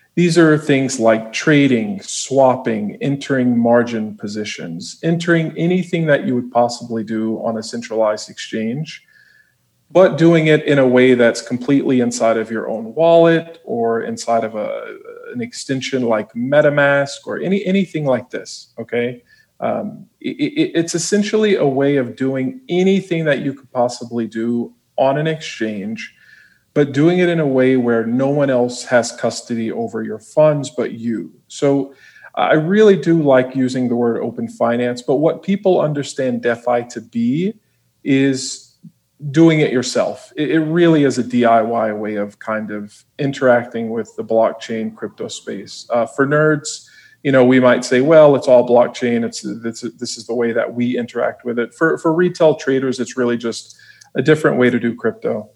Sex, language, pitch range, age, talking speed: male, English, 115-160 Hz, 40-59, 165 wpm